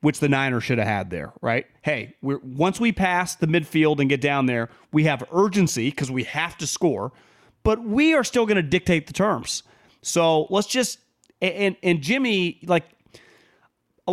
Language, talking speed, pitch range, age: English, 185 wpm, 130-180 Hz, 30-49